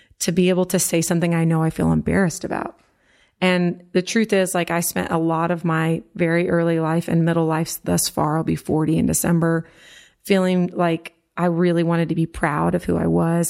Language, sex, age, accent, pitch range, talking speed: English, female, 30-49, American, 165-190 Hz, 215 wpm